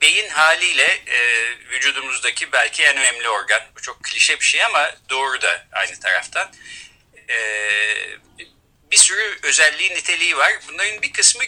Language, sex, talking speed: Turkish, male, 130 wpm